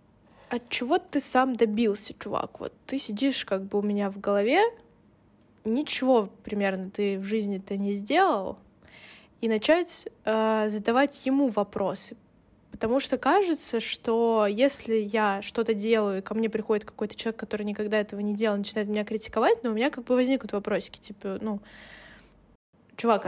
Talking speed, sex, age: 155 wpm, female, 10-29